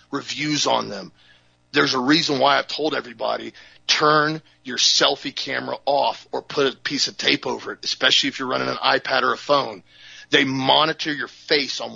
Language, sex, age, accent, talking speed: English, male, 40-59, American, 185 wpm